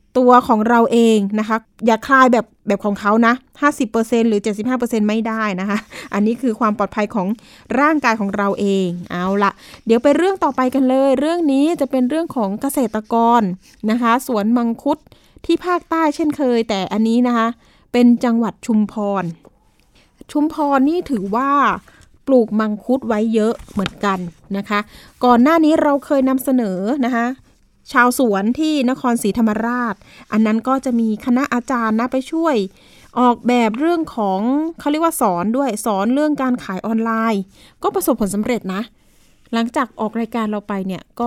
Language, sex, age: Thai, female, 20-39